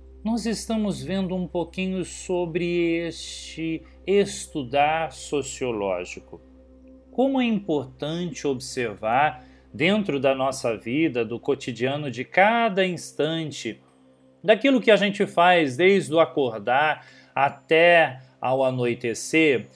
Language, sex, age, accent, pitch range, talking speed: Portuguese, male, 40-59, Brazilian, 130-195 Hz, 100 wpm